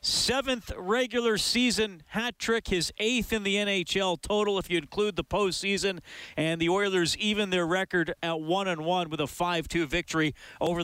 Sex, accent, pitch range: male, American, 145-180 Hz